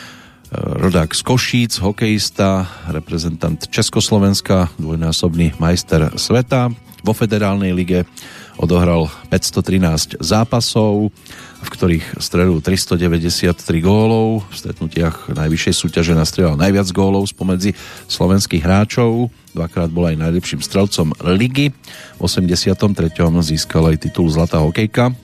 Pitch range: 85-110 Hz